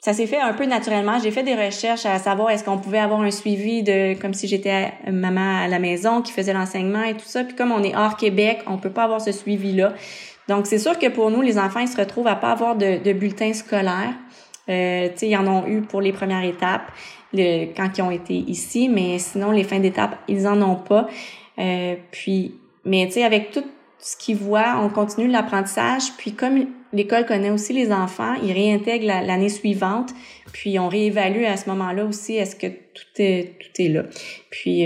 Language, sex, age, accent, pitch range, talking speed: French, female, 30-49, Canadian, 190-220 Hz, 220 wpm